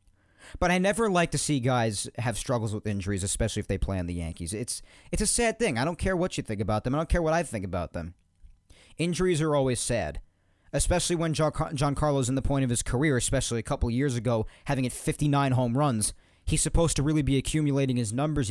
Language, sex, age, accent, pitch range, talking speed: English, male, 40-59, American, 90-150 Hz, 230 wpm